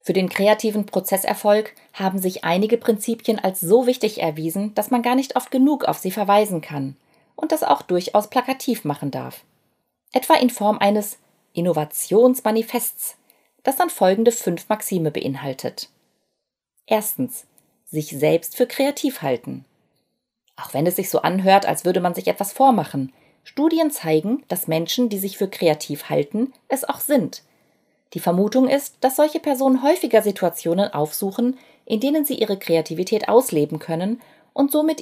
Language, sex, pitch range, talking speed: German, female, 165-245 Hz, 150 wpm